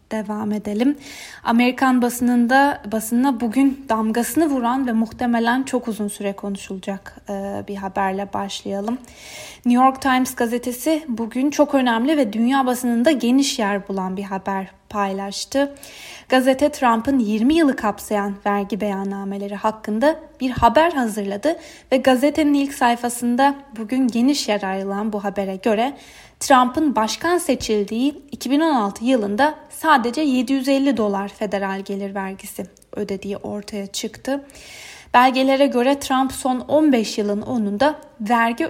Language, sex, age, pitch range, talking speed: Turkish, female, 20-39, 210-275 Hz, 120 wpm